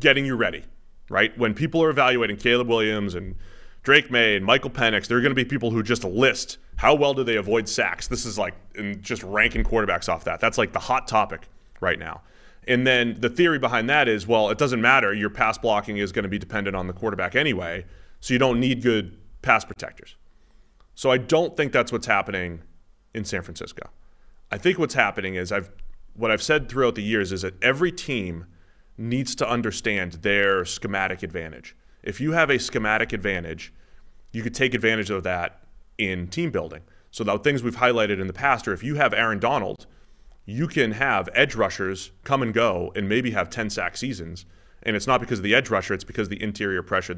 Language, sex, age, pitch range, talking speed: English, male, 30-49, 95-125 Hz, 210 wpm